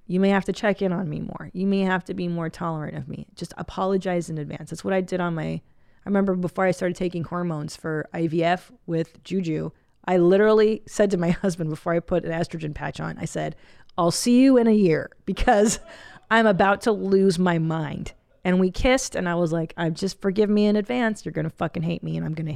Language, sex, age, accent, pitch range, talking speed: English, female, 40-59, American, 160-205 Hz, 235 wpm